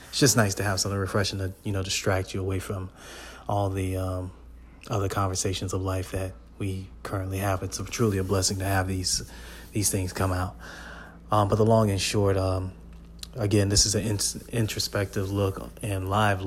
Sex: male